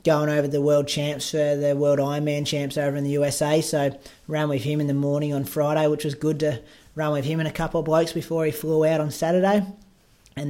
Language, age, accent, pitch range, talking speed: English, 20-39, Australian, 145-155 Hz, 240 wpm